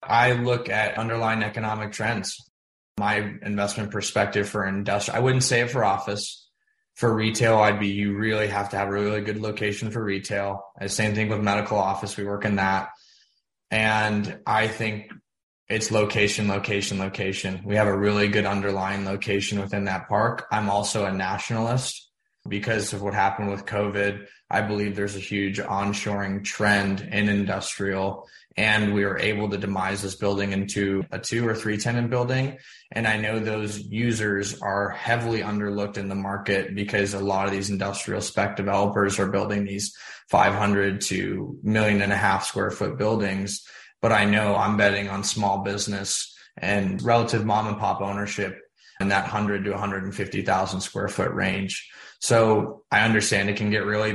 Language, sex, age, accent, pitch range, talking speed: English, male, 20-39, American, 100-105 Hz, 170 wpm